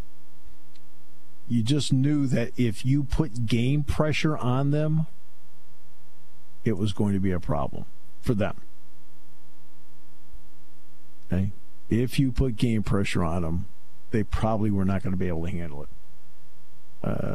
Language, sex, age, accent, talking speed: English, male, 50-69, American, 140 wpm